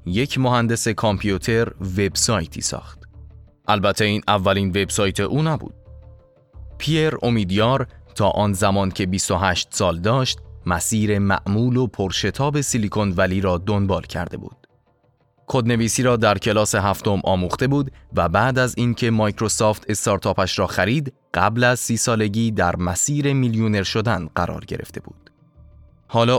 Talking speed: 130 wpm